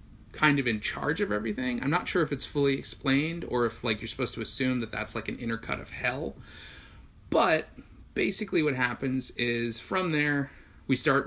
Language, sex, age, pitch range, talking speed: English, male, 30-49, 110-130 Hz, 195 wpm